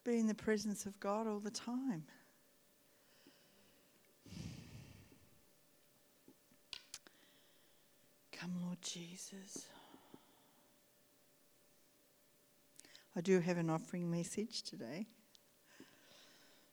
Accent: Australian